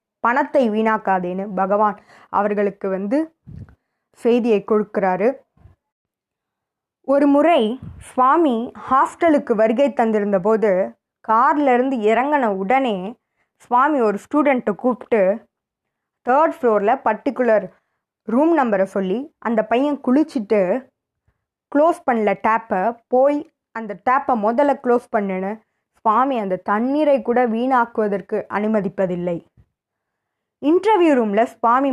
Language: Tamil